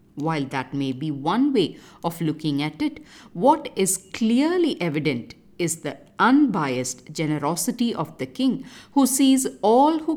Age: 50-69